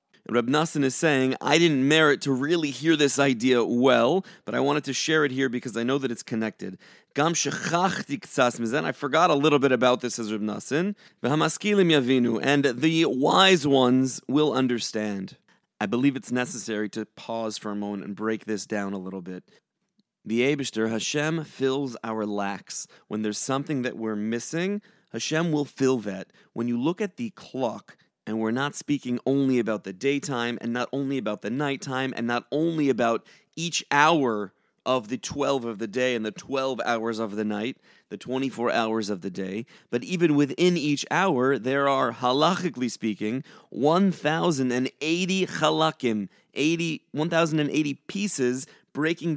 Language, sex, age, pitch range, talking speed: English, male, 30-49, 120-160 Hz, 160 wpm